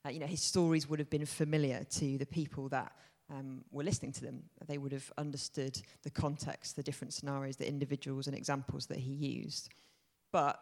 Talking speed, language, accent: 200 wpm, English, British